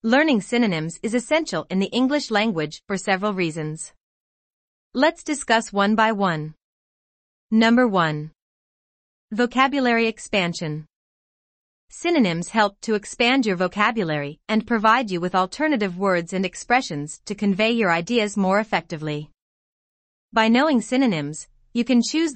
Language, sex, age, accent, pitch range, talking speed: English, female, 30-49, American, 170-235 Hz, 125 wpm